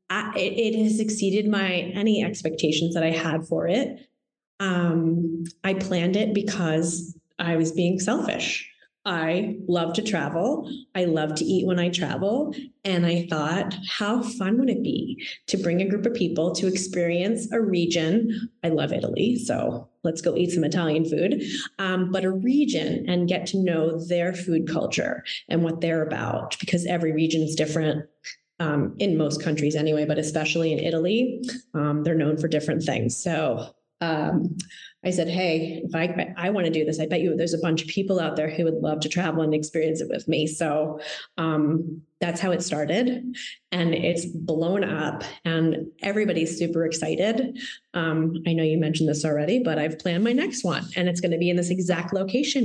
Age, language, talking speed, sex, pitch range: 20-39, English, 185 wpm, female, 160-200 Hz